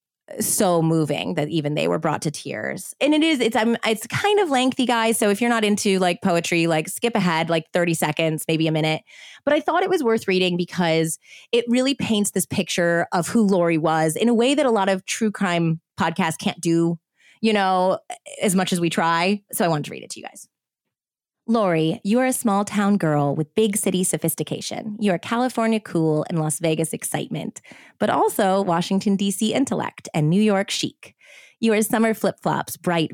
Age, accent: 20-39, American